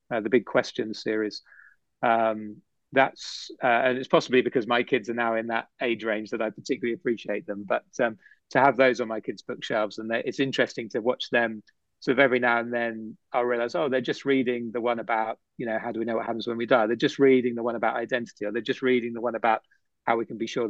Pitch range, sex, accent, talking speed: 110-125 Hz, male, British, 245 wpm